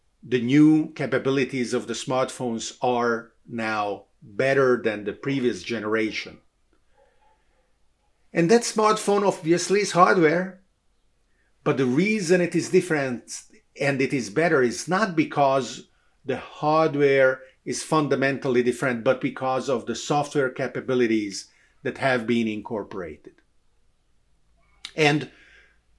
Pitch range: 120-150 Hz